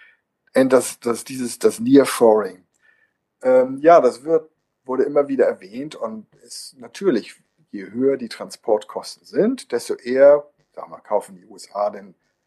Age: 50-69